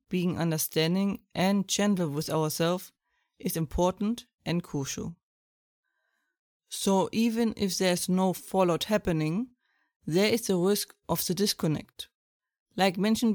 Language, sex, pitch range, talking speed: English, female, 170-210 Hz, 120 wpm